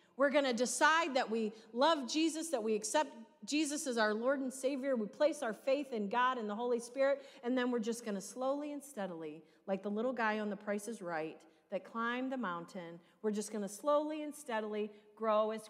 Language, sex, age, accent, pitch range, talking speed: English, female, 40-59, American, 215-305 Hz, 220 wpm